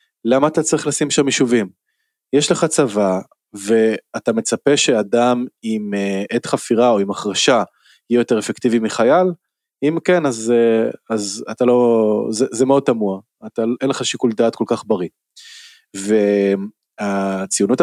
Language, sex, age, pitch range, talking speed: Hebrew, male, 20-39, 110-145 Hz, 135 wpm